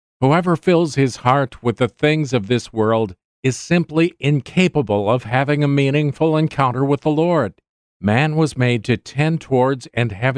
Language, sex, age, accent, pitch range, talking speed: English, male, 50-69, American, 110-145 Hz, 170 wpm